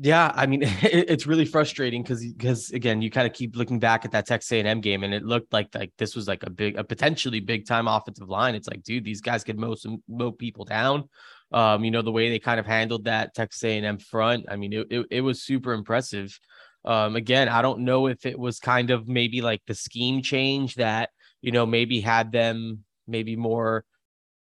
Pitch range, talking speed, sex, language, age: 110-130 Hz, 230 wpm, male, English, 20-39